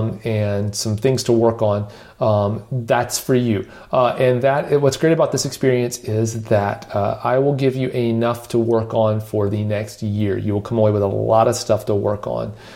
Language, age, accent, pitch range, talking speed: English, 40-59, American, 110-125 Hz, 210 wpm